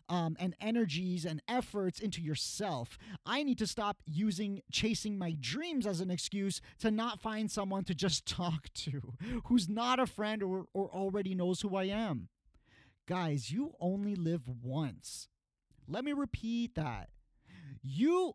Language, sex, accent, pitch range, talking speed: English, male, American, 180-255 Hz, 155 wpm